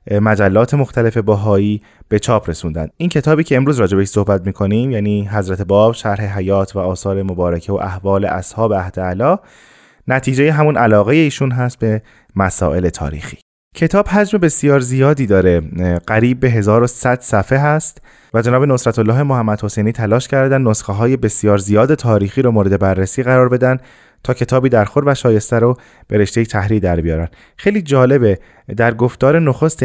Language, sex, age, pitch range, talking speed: Persian, male, 20-39, 100-130 Hz, 160 wpm